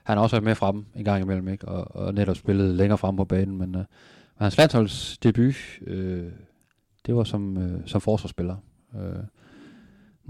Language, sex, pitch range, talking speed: Danish, male, 95-110 Hz, 175 wpm